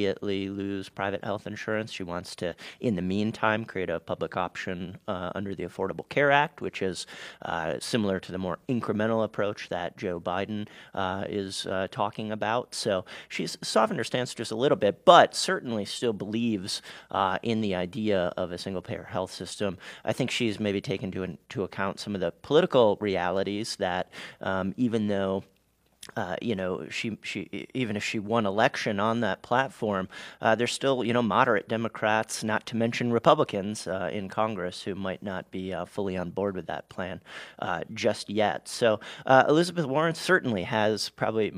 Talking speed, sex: 180 wpm, male